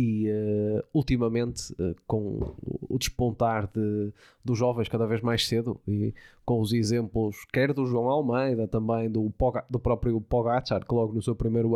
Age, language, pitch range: 20-39, Portuguese, 115-130 Hz